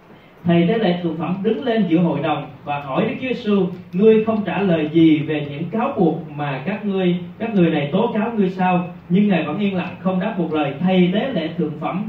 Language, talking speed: Vietnamese, 240 wpm